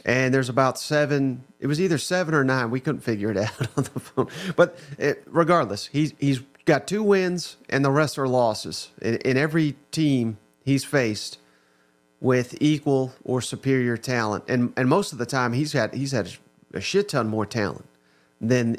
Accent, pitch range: American, 120-155 Hz